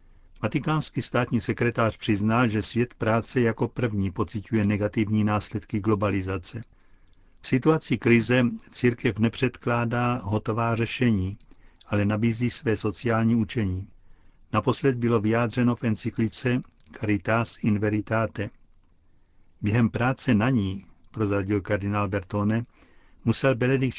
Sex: male